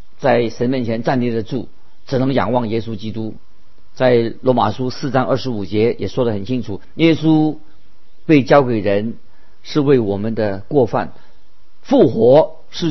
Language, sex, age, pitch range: Chinese, male, 50-69, 110-145 Hz